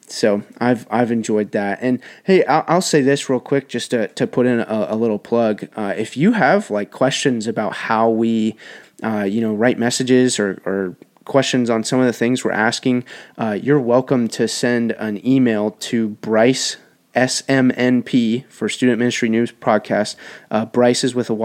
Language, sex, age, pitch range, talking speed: English, male, 30-49, 110-130 Hz, 185 wpm